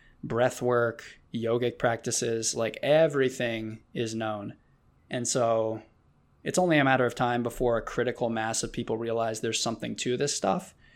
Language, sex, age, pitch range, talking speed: English, male, 20-39, 110-125 Hz, 155 wpm